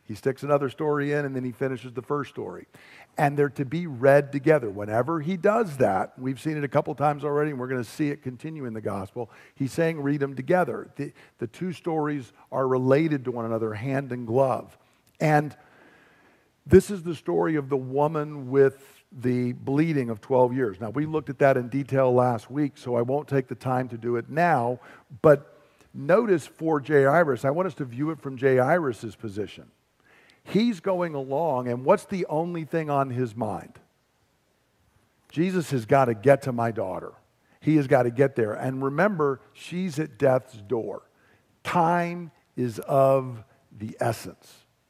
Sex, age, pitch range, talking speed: male, 50-69, 125-155 Hz, 185 wpm